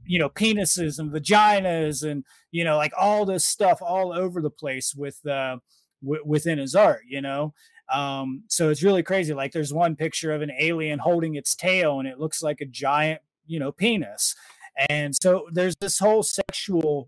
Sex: male